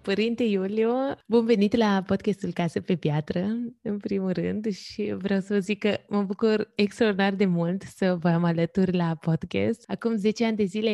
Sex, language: female, Romanian